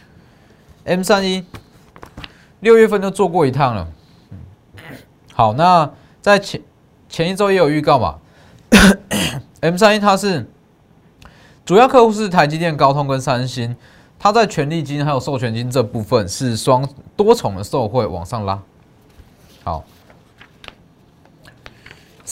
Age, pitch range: 20-39, 110-175 Hz